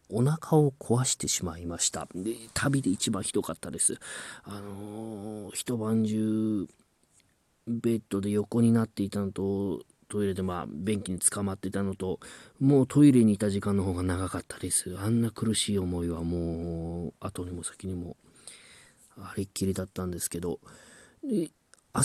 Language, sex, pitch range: Japanese, male, 90-115 Hz